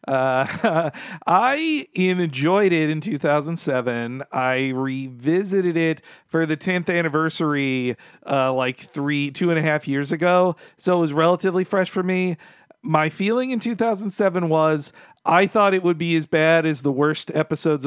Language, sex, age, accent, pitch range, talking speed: English, male, 40-59, American, 145-185 Hz, 150 wpm